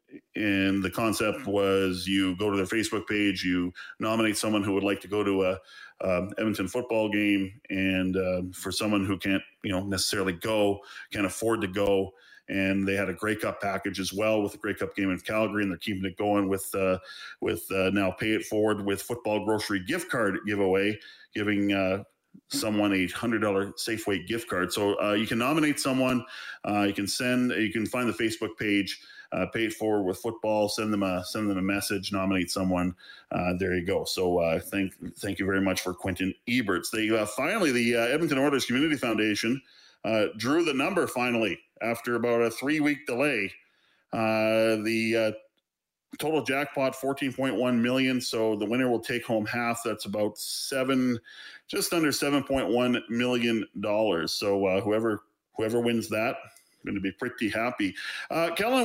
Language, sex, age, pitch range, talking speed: English, male, 40-59, 95-120 Hz, 190 wpm